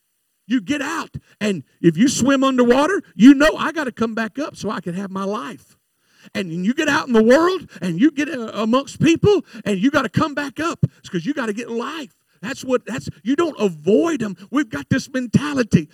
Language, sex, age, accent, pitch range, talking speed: English, male, 50-69, American, 165-230 Hz, 220 wpm